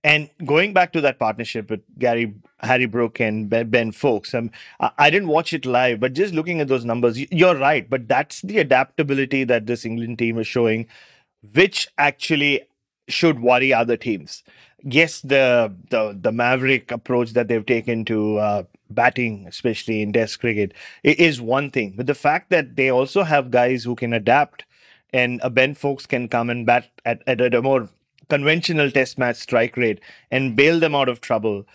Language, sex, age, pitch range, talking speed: English, male, 30-49, 120-150 Hz, 180 wpm